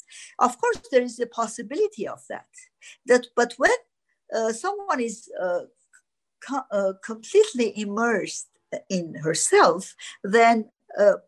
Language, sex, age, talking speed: English, female, 50-69, 120 wpm